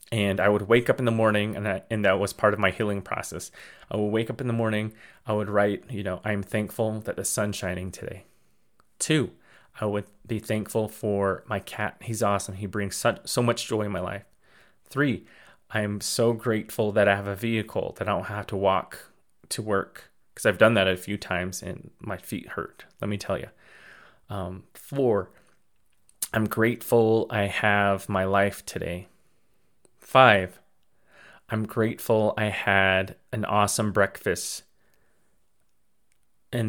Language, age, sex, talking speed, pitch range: English, 30-49, male, 175 wpm, 100-110 Hz